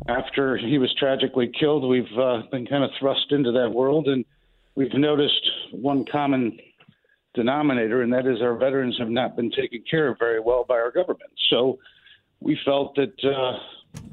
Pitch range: 125-145 Hz